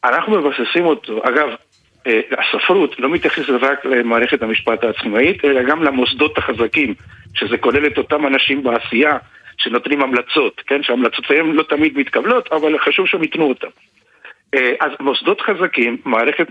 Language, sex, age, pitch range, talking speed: English, male, 50-69, 130-180 Hz, 140 wpm